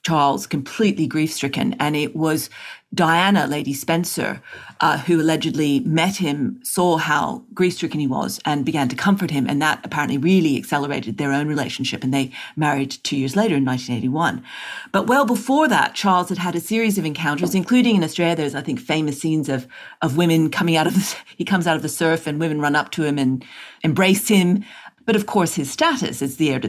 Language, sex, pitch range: English, female, 145-185 Hz